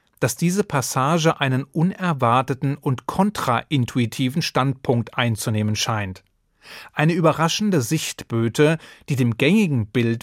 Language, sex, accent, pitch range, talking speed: German, male, German, 120-160 Hz, 100 wpm